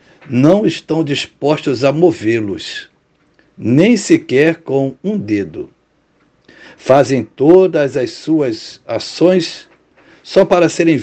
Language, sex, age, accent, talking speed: Portuguese, male, 60-79, Brazilian, 100 wpm